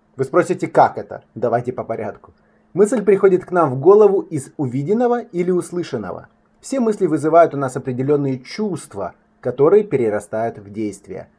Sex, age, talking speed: male, 20-39, 150 wpm